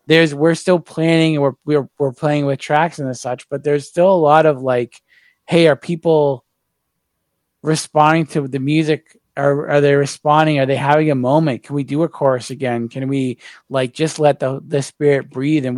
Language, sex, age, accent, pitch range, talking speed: English, male, 20-39, American, 125-150 Hz, 195 wpm